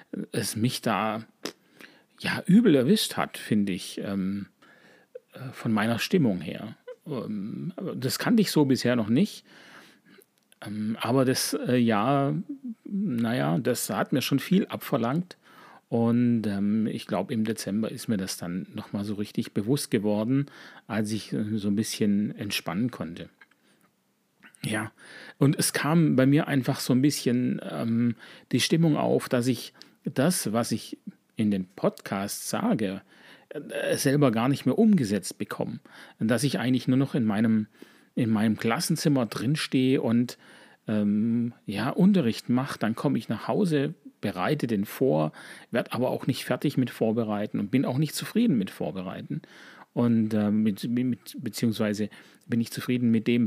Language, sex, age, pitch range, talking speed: German, male, 40-59, 110-140 Hz, 155 wpm